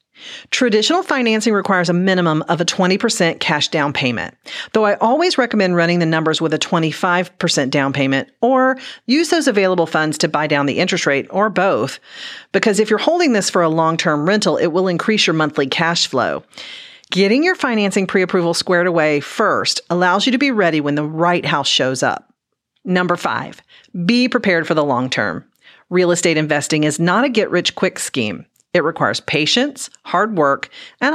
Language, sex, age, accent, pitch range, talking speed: English, female, 40-59, American, 160-210 Hz, 185 wpm